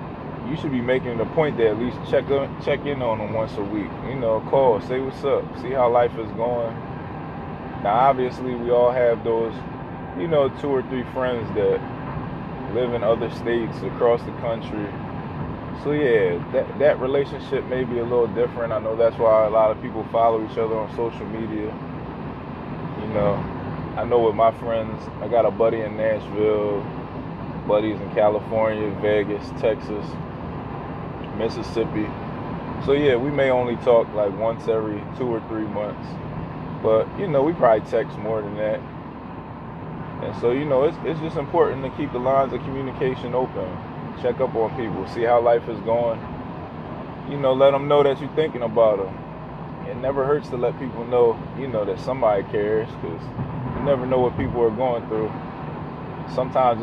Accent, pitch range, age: American, 110-130 Hz, 20-39